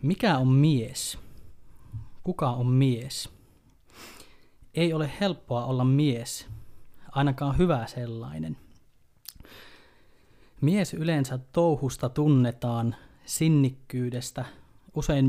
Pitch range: 120-150 Hz